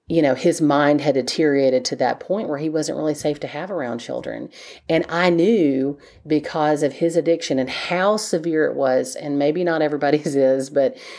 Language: English